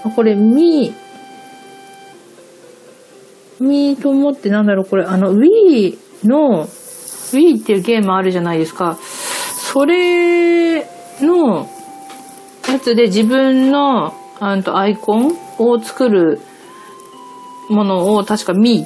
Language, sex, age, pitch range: Japanese, female, 40-59, 195-280 Hz